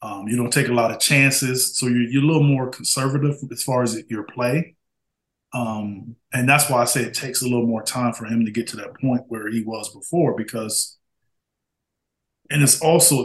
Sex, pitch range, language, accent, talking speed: male, 115-135 Hz, English, American, 215 wpm